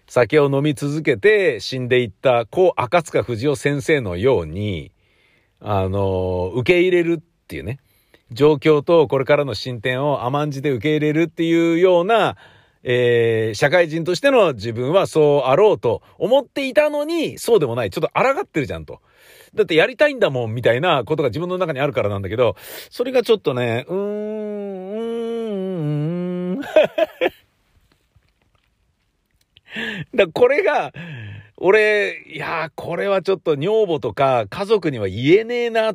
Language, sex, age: Japanese, male, 50-69